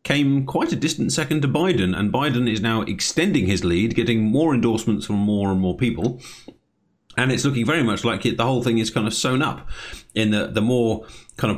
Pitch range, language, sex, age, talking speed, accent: 90-115 Hz, English, male, 30-49, 220 wpm, British